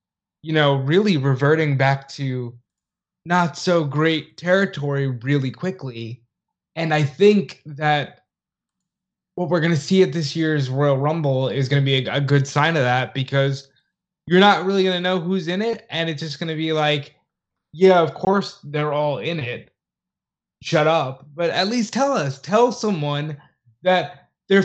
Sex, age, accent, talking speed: male, 20-39, American, 170 wpm